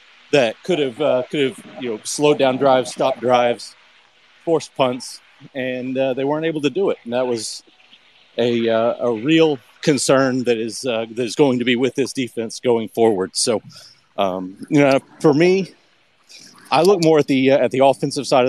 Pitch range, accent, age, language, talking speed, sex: 115-140 Hz, American, 40-59, English, 195 wpm, male